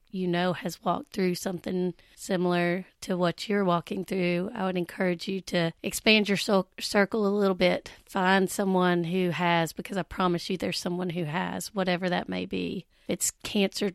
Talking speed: 180 wpm